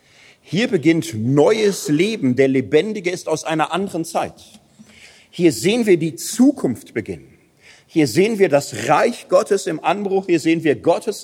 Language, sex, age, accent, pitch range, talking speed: German, male, 40-59, German, 160-200 Hz, 155 wpm